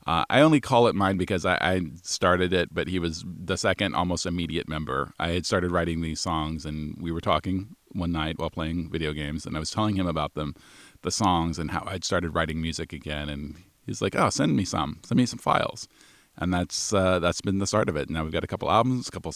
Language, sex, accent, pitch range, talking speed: English, male, American, 85-105 Hz, 245 wpm